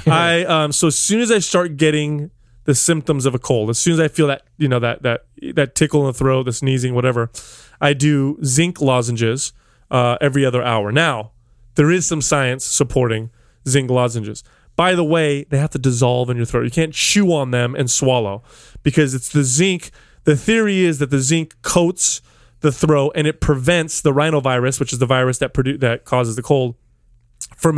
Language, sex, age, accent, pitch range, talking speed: English, male, 20-39, American, 125-155 Hz, 205 wpm